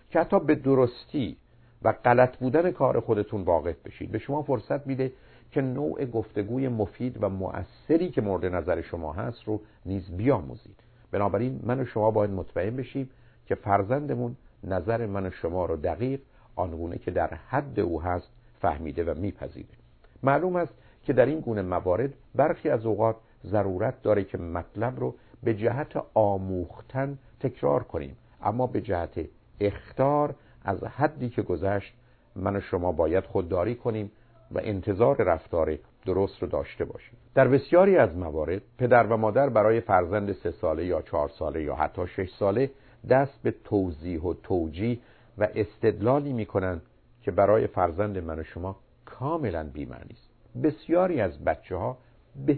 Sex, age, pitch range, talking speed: male, 50-69, 100-130 Hz, 150 wpm